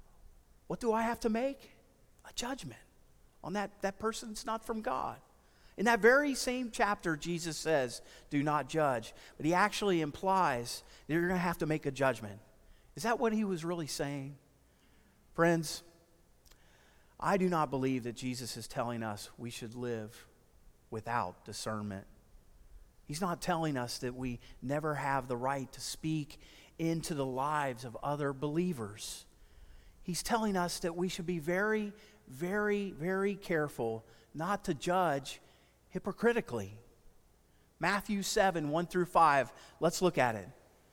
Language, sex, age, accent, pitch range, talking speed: English, male, 40-59, American, 120-190 Hz, 145 wpm